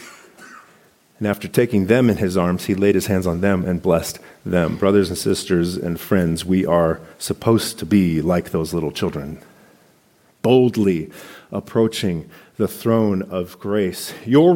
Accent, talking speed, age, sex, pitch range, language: American, 155 wpm, 40-59, male, 100-130 Hz, English